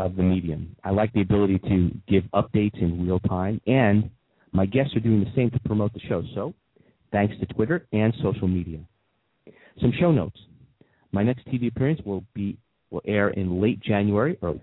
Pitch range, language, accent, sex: 90-120 Hz, English, American, male